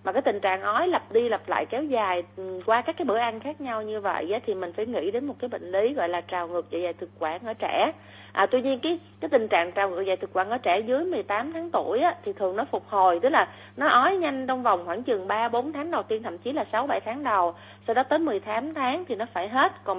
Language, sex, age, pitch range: Vietnamese, female, 30-49, 190-265 Hz